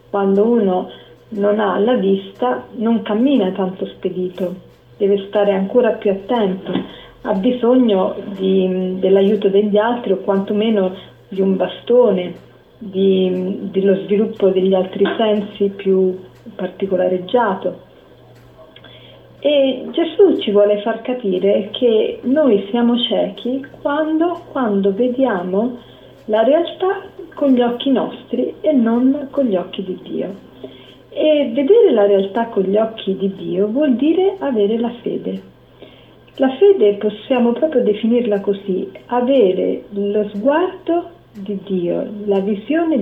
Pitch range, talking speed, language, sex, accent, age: 195-250 Hz, 120 wpm, Italian, female, native, 40-59